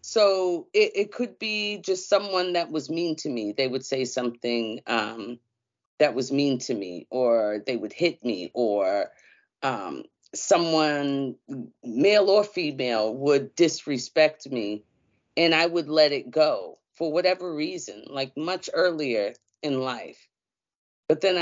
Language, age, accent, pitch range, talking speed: English, 40-59, American, 130-180 Hz, 145 wpm